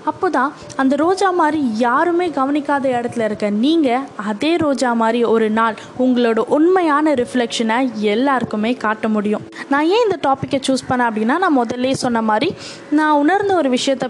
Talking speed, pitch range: 150 wpm, 225-280 Hz